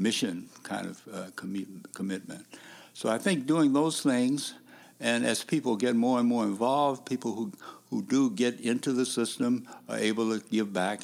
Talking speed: 175 wpm